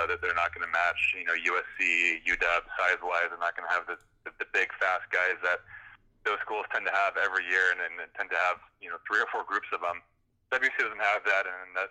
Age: 20-39